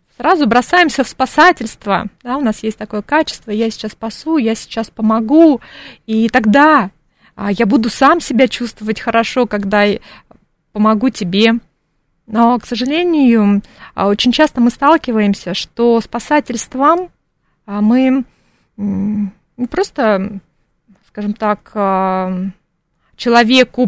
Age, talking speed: 20-39, 110 wpm